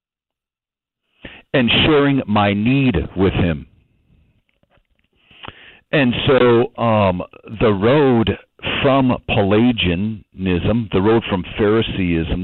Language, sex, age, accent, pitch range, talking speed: English, male, 60-79, American, 80-110 Hz, 80 wpm